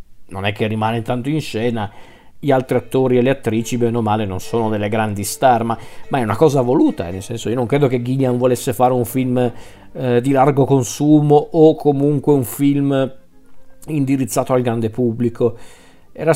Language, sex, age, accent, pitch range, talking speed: Italian, male, 40-59, native, 115-135 Hz, 185 wpm